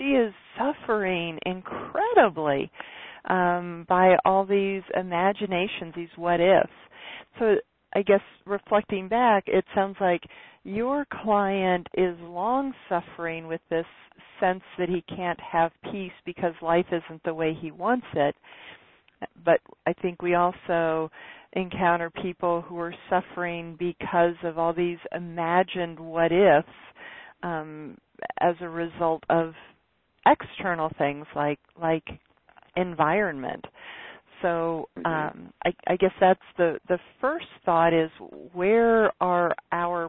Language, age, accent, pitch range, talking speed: English, 40-59, American, 160-190 Hz, 125 wpm